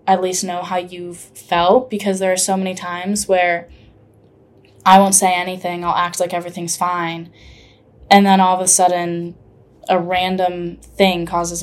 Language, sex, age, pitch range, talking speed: English, female, 10-29, 175-200 Hz, 170 wpm